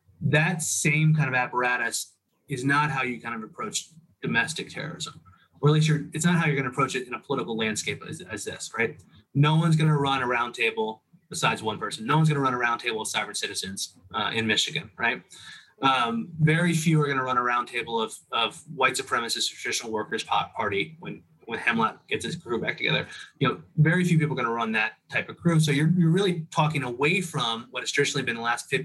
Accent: American